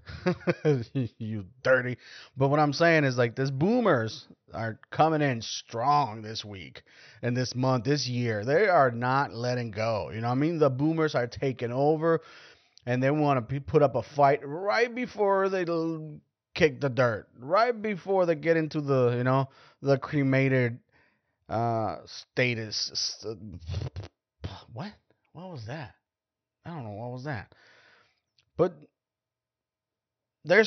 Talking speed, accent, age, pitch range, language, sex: 145 wpm, American, 30-49, 120-155 Hz, English, male